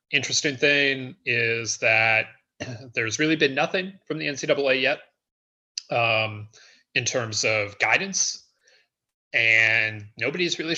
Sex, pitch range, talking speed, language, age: male, 105-145 Hz, 110 wpm, English, 30-49